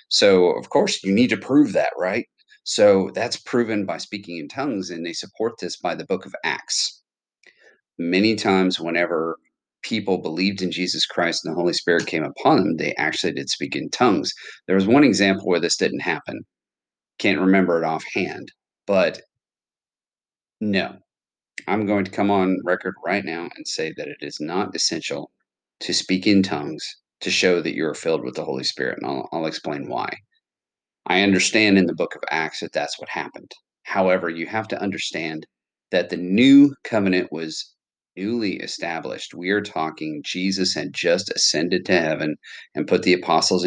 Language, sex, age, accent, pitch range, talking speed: English, male, 40-59, American, 90-115 Hz, 175 wpm